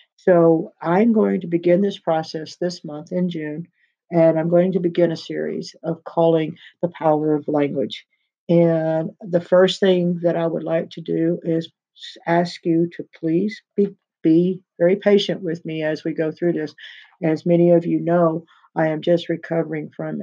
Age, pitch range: 50-69, 155-170 Hz